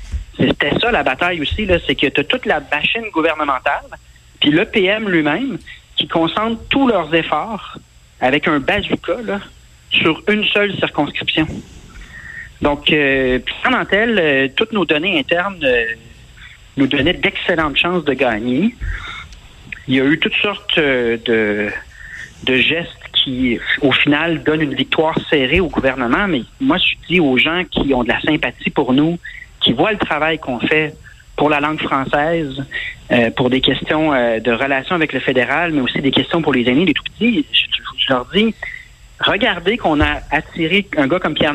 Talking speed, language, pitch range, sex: 170 wpm, French, 135-180 Hz, male